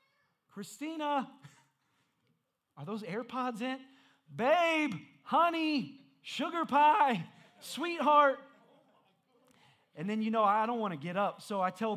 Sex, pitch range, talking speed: male, 215-280 Hz, 115 wpm